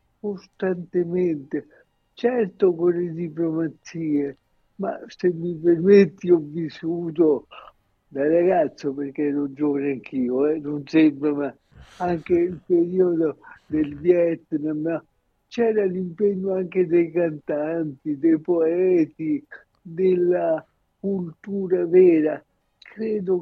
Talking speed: 95 wpm